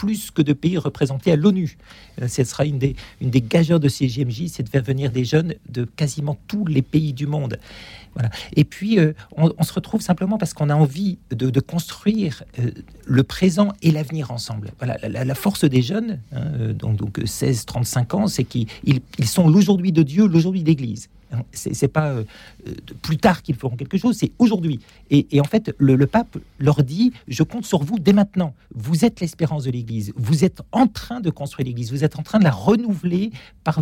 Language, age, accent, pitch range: French, 50-69, French, 125-175 Hz